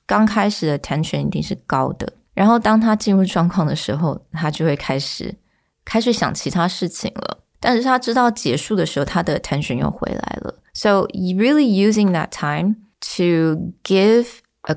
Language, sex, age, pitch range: Chinese, female, 20-39, 160-210 Hz